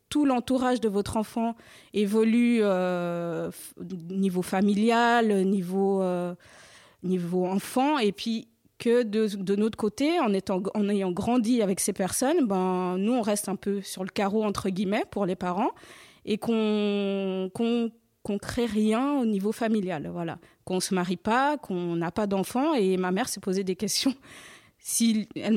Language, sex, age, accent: French, female, 20-39, French